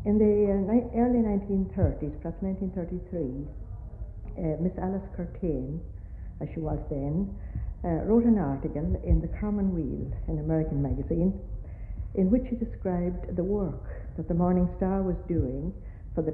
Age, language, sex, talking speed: 60-79, English, female, 150 wpm